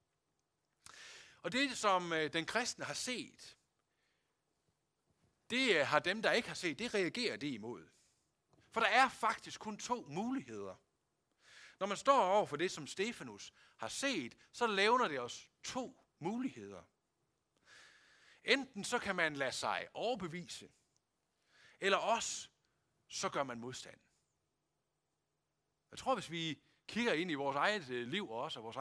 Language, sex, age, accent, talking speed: Danish, male, 60-79, native, 140 wpm